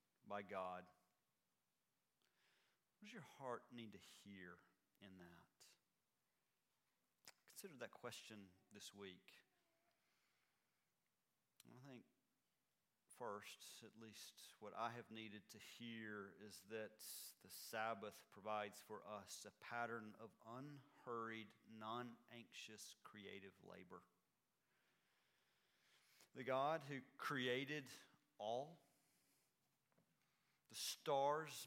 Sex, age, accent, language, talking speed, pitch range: male, 40-59, American, English, 90 wpm, 105-140 Hz